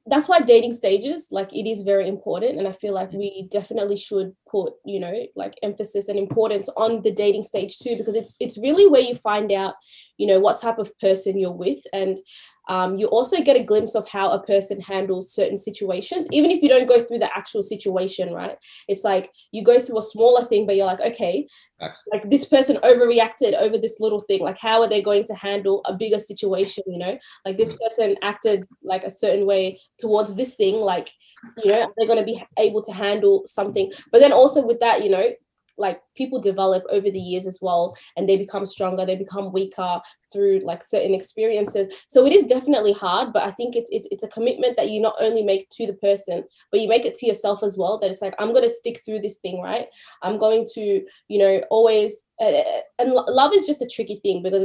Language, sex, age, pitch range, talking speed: English, female, 20-39, 195-235 Hz, 220 wpm